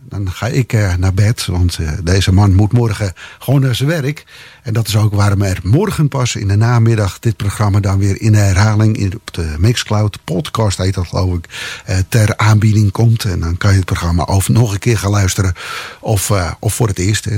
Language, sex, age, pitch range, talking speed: English, male, 50-69, 100-125 Hz, 205 wpm